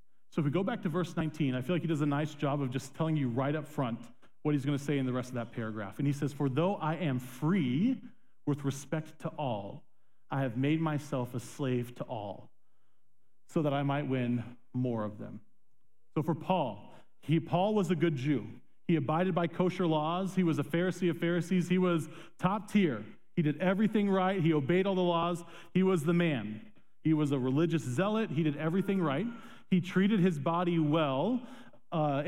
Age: 40-59